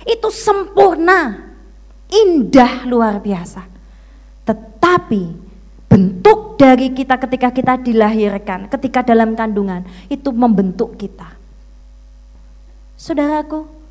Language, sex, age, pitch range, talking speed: Indonesian, female, 20-39, 190-265 Hz, 80 wpm